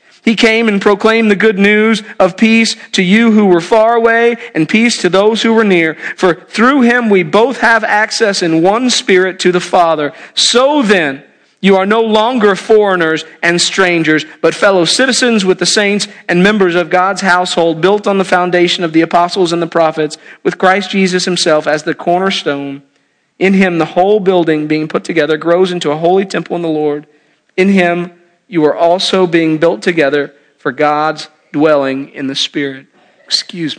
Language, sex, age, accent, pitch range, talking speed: English, male, 40-59, American, 160-205 Hz, 185 wpm